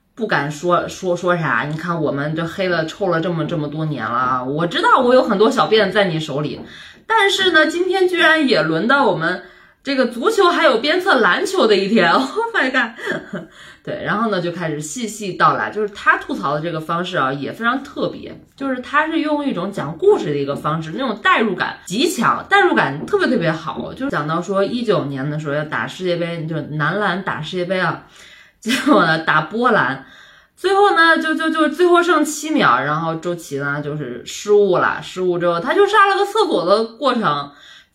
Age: 20-39